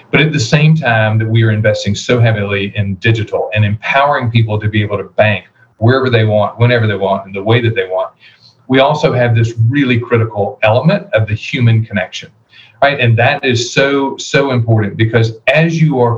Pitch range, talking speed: 110-130 Hz, 205 wpm